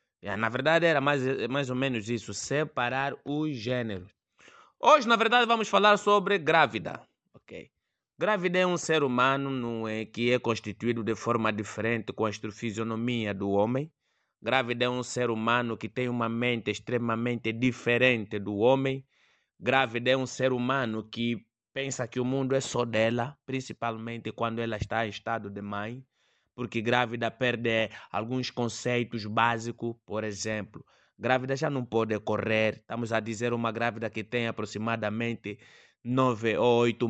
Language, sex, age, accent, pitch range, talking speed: Portuguese, male, 20-39, Brazilian, 110-130 Hz, 155 wpm